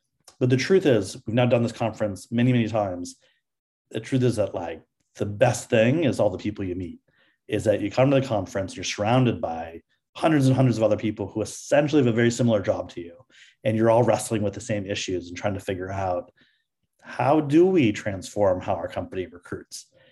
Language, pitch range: English, 100-125 Hz